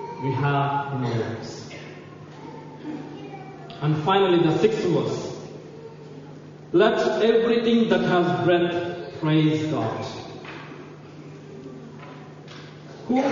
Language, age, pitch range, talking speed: English, 50-69, 155-205 Hz, 75 wpm